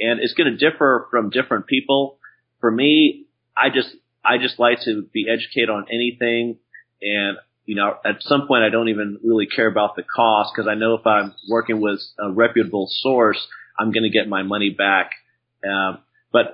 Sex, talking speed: male, 190 wpm